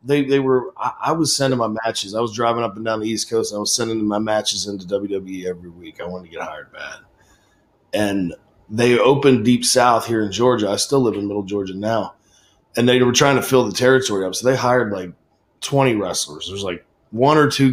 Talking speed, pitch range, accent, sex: 235 wpm, 105-130 Hz, American, male